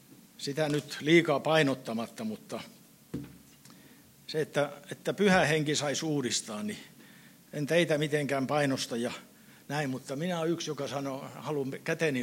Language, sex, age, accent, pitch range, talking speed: Finnish, male, 60-79, native, 135-170 Hz, 130 wpm